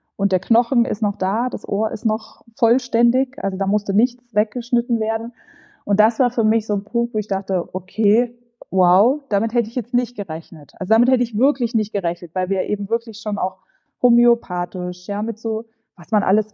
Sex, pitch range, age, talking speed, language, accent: female, 190-230 Hz, 20-39, 205 wpm, German, German